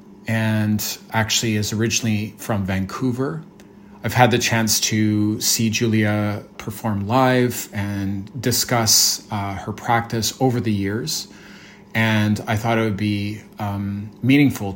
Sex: male